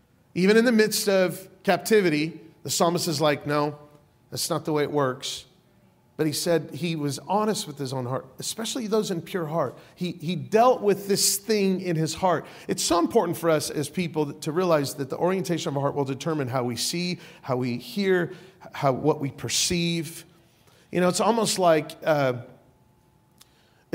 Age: 40-59